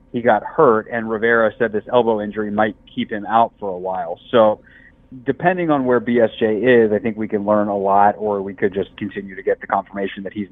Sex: male